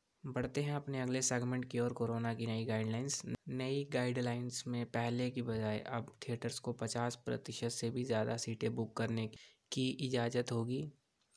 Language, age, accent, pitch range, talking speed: Hindi, 20-39, native, 115-130 Hz, 165 wpm